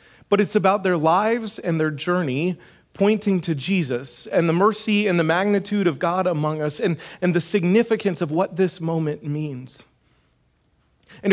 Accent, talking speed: American, 165 wpm